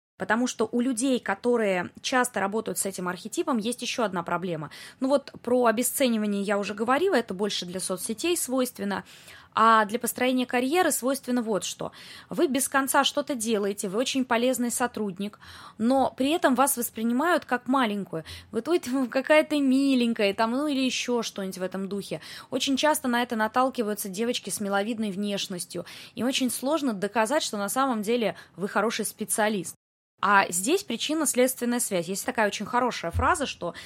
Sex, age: female, 20-39